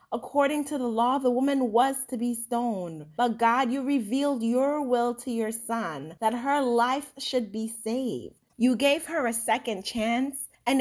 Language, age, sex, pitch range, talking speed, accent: English, 30-49, female, 190-255 Hz, 180 wpm, American